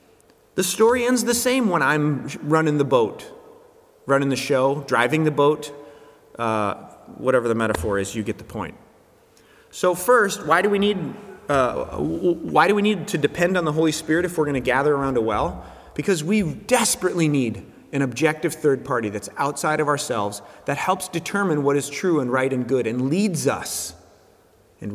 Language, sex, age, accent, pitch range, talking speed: English, male, 30-49, American, 135-195 Hz, 175 wpm